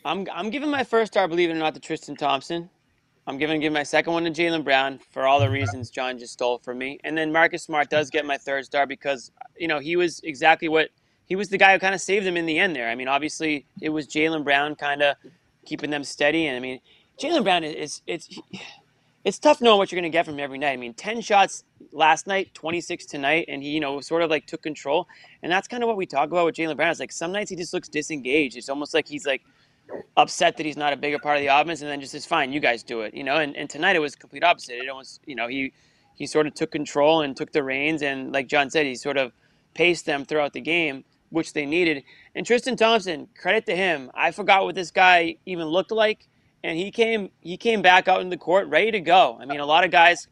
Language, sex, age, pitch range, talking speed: English, male, 30-49, 140-170 Hz, 265 wpm